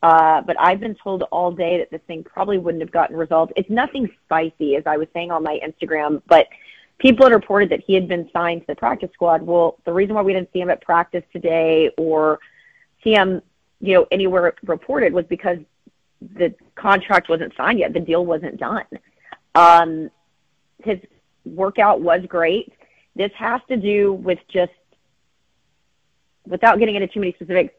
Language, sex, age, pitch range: English, female, 30-49, 170-215 Hz